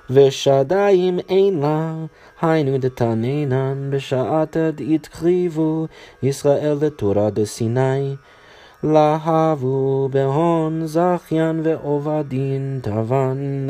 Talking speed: 75 wpm